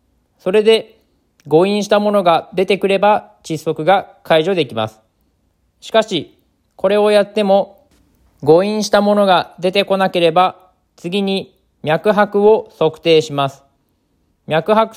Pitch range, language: 130-195 Hz, Japanese